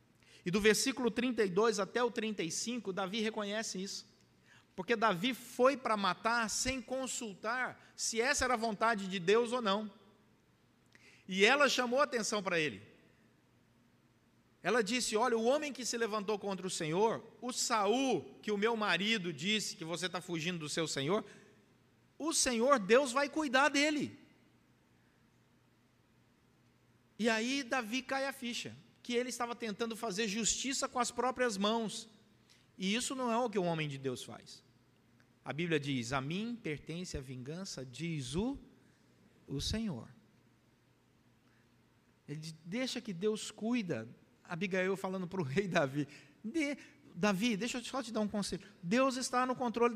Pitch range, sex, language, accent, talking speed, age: 185-245 Hz, male, Portuguese, Brazilian, 155 wpm, 50-69